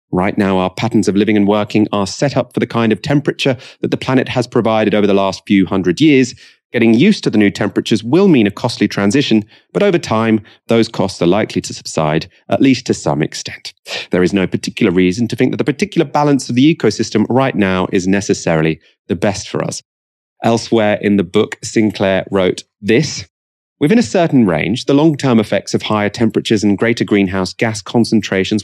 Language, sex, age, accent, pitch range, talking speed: English, male, 30-49, British, 95-120 Hz, 200 wpm